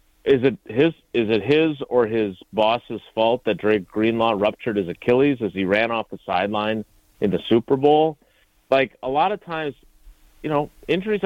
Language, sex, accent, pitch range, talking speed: English, male, American, 105-135 Hz, 180 wpm